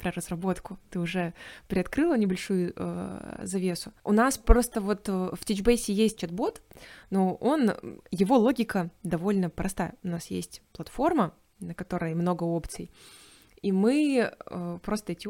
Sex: female